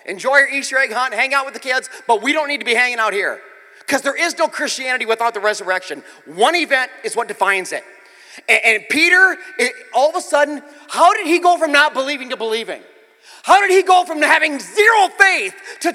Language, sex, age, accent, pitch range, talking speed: English, male, 30-49, American, 230-345 Hz, 220 wpm